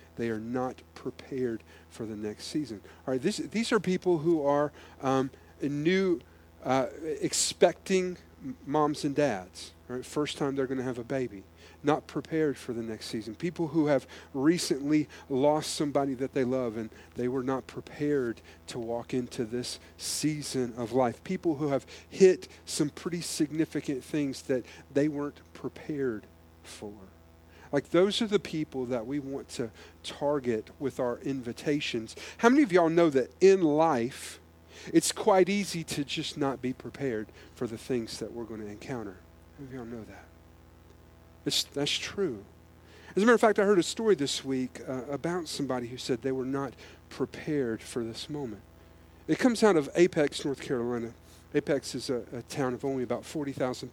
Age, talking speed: 40-59, 170 wpm